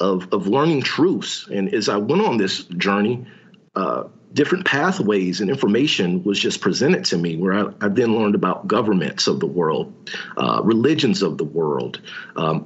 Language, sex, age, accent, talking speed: English, male, 40-59, American, 175 wpm